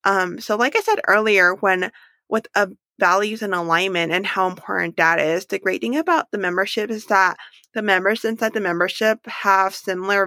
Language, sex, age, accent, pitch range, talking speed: English, female, 20-39, American, 175-205 Hz, 185 wpm